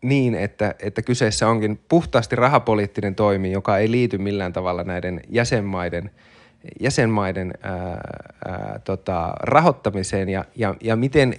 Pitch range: 100-120 Hz